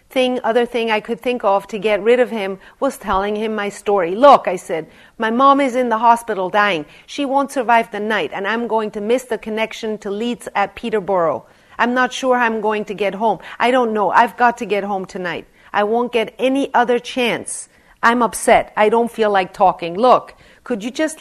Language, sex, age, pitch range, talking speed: English, female, 40-59, 200-245 Hz, 220 wpm